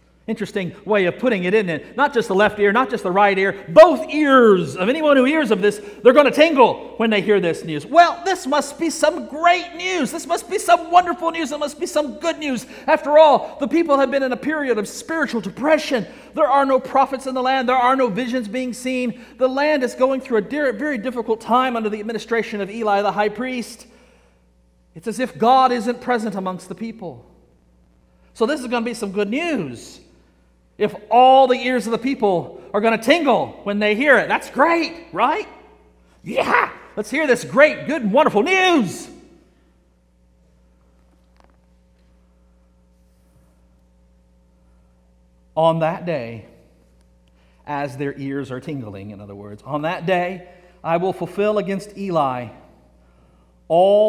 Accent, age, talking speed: American, 40-59, 175 wpm